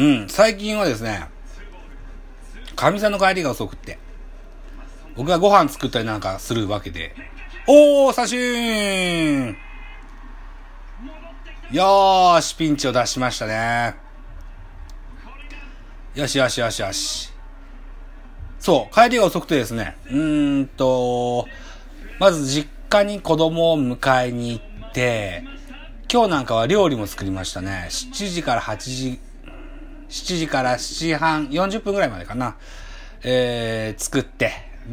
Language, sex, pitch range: Japanese, male, 110-165 Hz